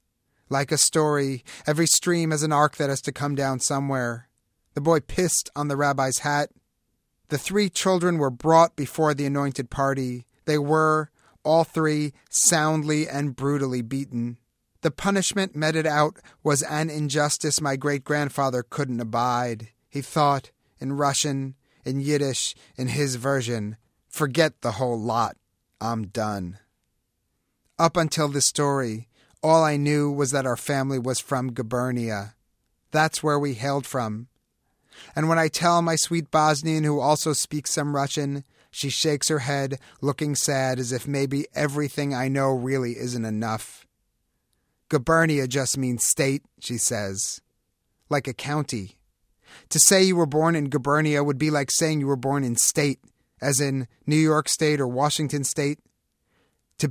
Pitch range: 125-155 Hz